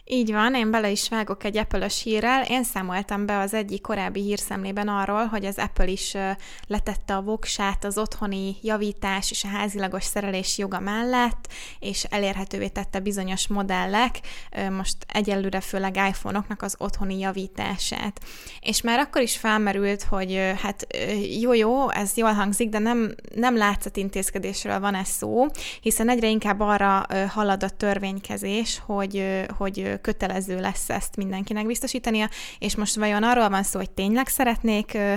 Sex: female